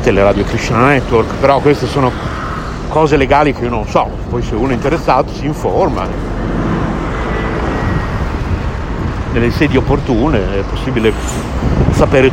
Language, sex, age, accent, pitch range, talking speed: Italian, male, 50-69, native, 105-140 Hz, 125 wpm